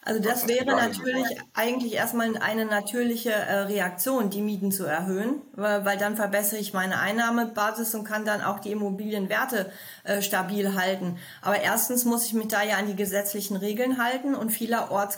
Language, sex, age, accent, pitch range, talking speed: German, female, 30-49, German, 190-225 Hz, 160 wpm